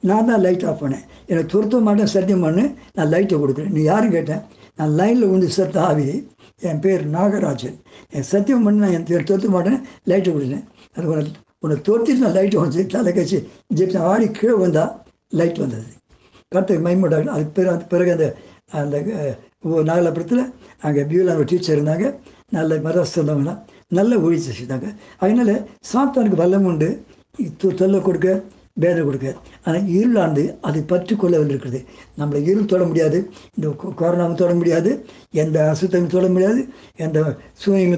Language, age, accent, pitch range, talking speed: Tamil, 60-79, native, 155-195 Hz, 135 wpm